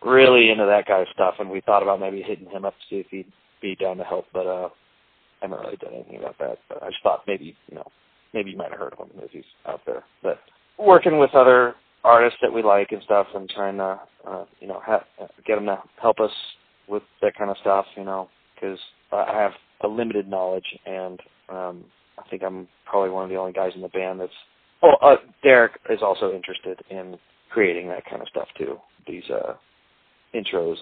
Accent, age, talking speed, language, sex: American, 30-49, 220 wpm, English, male